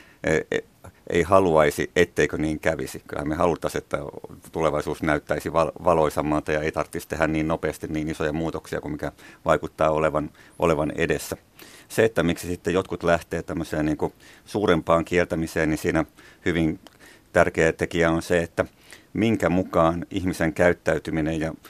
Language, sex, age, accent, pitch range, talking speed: Finnish, male, 50-69, native, 80-85 Hz, 140 wpm